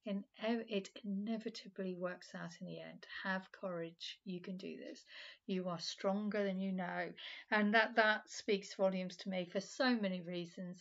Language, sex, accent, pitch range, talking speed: English, female, British, 185-230 Hz, 165 wpm